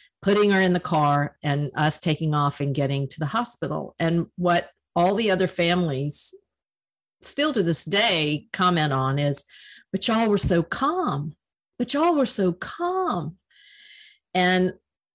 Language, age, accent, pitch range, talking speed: English, 50-69, American, 165-200 Hz, 150 wpm